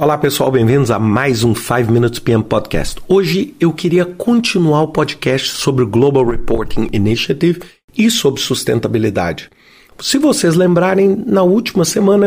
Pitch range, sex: 125-185 Hz, male